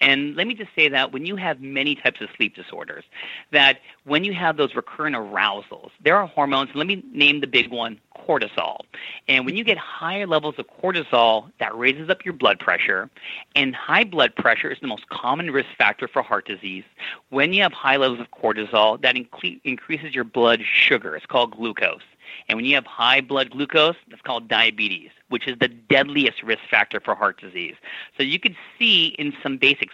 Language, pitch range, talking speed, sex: English, 120-155 Hz, 200 wpm, male